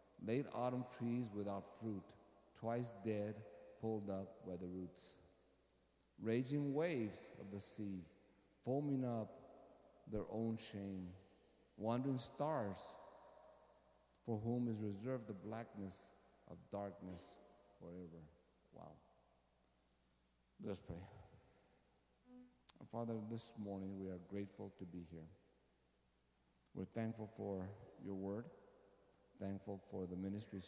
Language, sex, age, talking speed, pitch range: English, male, 50-69, 105 wpm, 95-110 Hz